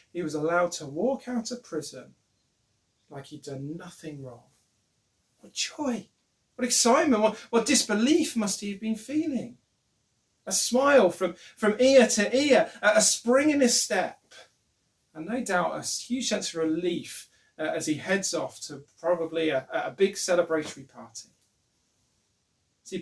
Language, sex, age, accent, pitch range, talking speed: English, male, 40-59, British, 165-240 Hz, 150 wpm